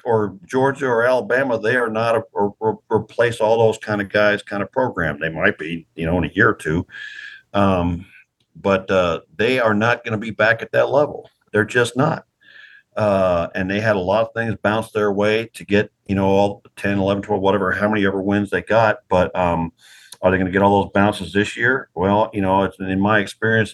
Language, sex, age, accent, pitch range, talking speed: English, male, 50-69, American, 95-120 Hz, 225 wpm